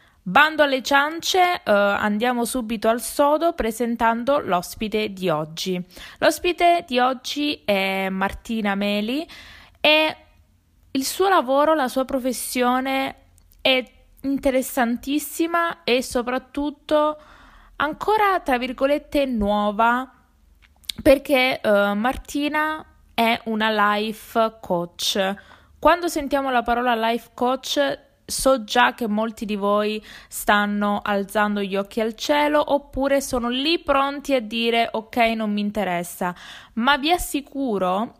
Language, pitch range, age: Italian, 210-280 Hz, 20-39